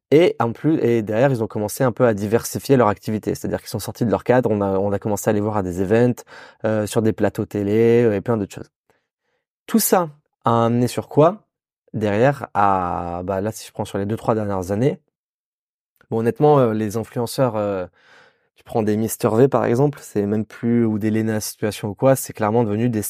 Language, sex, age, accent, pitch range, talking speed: French, male, 20-39, French, 105-125 Hz, 225 wpm